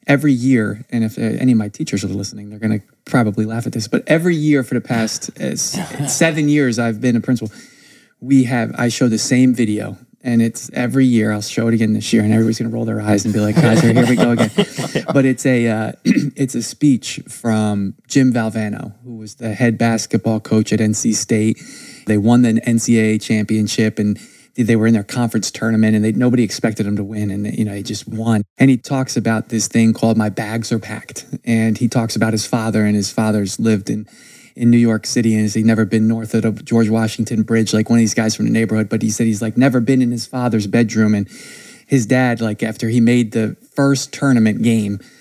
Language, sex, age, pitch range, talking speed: English, male, 20-39, 110-125 Hz, 225 wpm